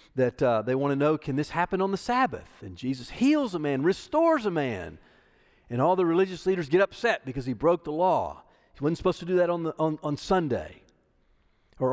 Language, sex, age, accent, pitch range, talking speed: English, male, 50-69, American, 150-215 Hz, 215 wpm